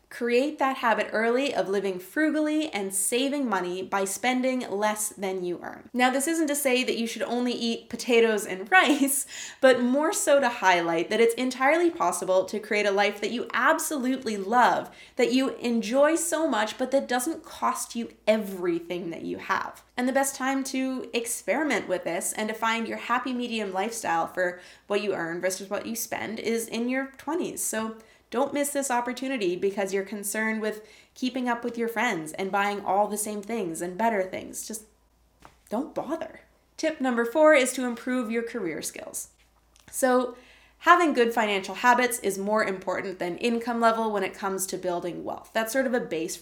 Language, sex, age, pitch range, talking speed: English, female, 20-39, 200-270 Hz, 185 wpm